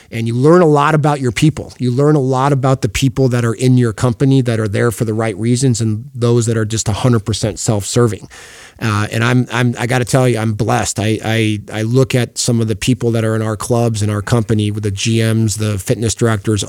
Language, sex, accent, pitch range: English, male, American, 115-135 Hz